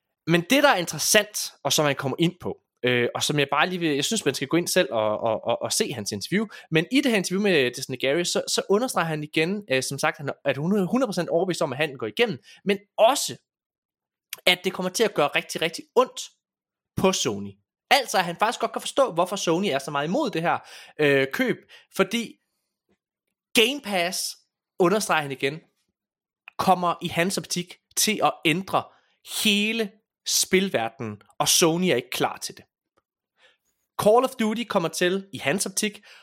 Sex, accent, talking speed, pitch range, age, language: male, native, 195 wpm, 140-205 Hz, 20-39, Danish